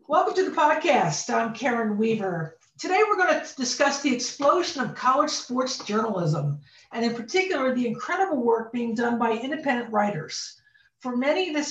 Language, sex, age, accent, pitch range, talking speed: English, female, 50-69, American, 220-280 Hz, 165 wpm